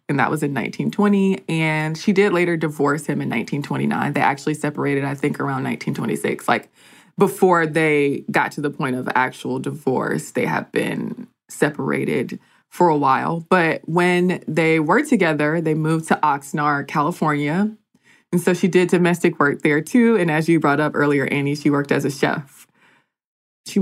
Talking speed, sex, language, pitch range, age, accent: 170 wpm, female, English, 150-185 Hz, 20-39, American